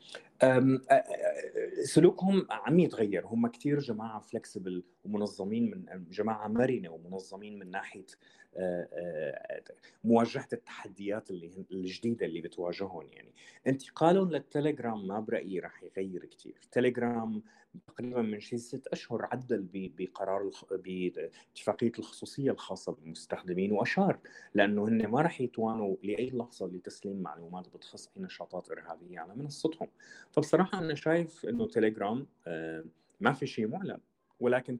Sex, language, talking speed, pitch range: male, Arabic, 115 wpm, 95-145 Hz